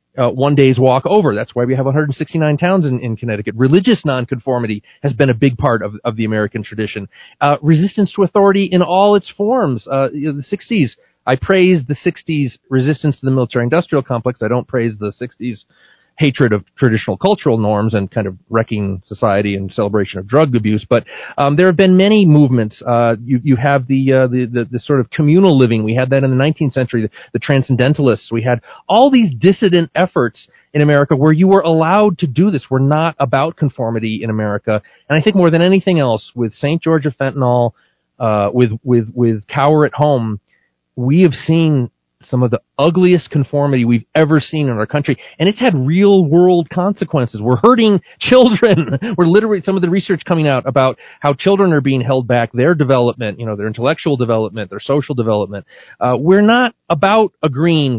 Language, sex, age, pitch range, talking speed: English, male, 40-59, 120-170 Hz, 200 wpm